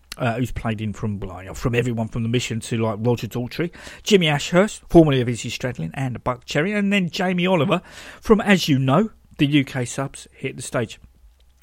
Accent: British